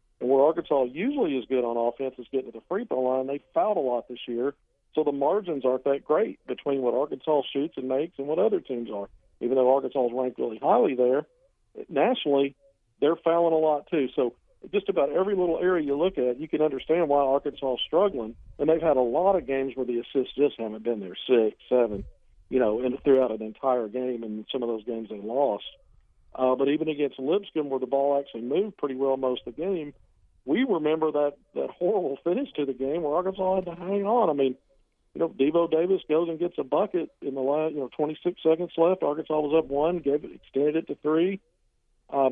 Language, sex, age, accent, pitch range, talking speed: English, male, 50-69, American, 130-160 Hz, 225 wpm